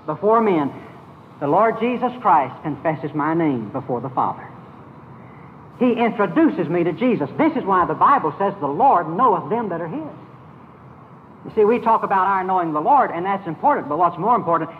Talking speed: 185 wpm